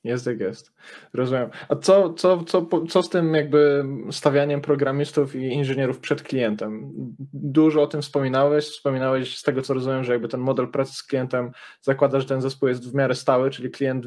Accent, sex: native, male